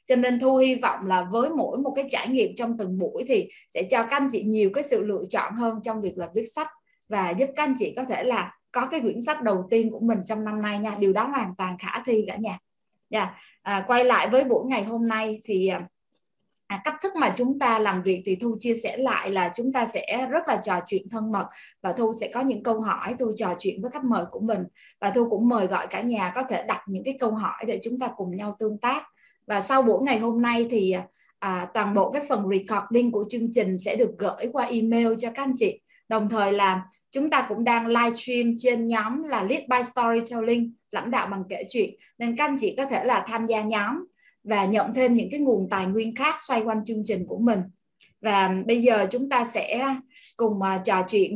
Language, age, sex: Vietnamese, 20-39, female